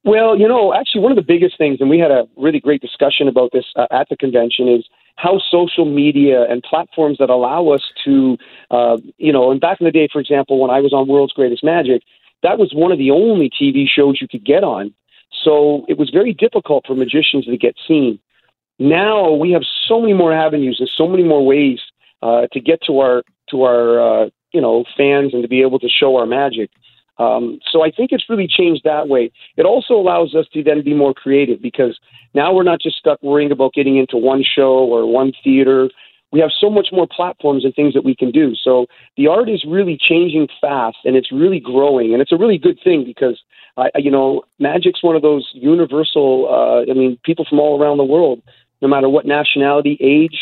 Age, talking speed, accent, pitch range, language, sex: 40-59, 225 wpm, American, 130-165 Hz, English, male